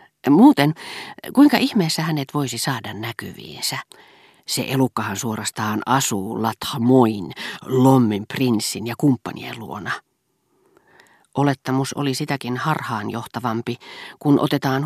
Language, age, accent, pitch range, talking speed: Finnish, 40-59, native, 115-145 Hz, 95 wpm